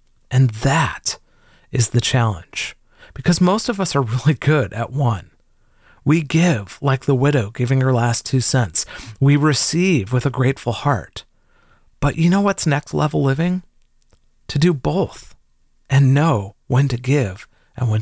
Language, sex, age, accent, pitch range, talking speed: English, male, 40-59, American, 115-150 Hz, 155 wpm